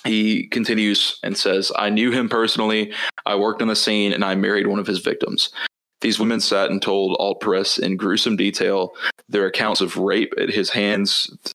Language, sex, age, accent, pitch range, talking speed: English, male, 20-39, American, 100-110 Hz, 190 wpm